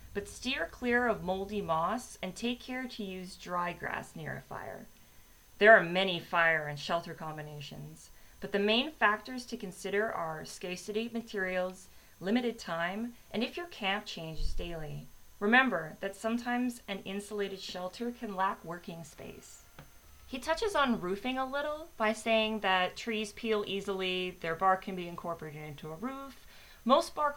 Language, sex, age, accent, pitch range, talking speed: English, female, 30-49, American, 170-225 Hz, 160 wpm